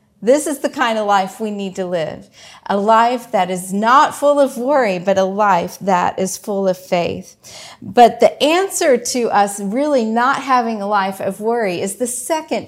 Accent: American